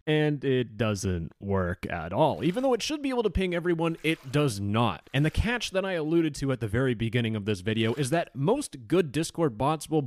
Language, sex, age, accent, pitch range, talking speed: English, male, 20-39, American, 120-170 Hz, 230 wpm